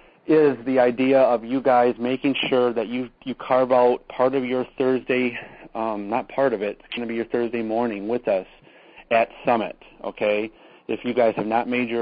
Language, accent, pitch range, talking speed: English, American, 110-125 Hz, 205 wpm